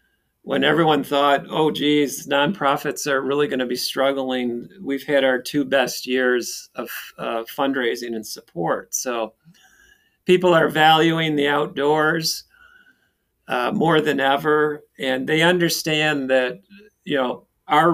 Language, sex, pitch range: English, male, 130-160 Hz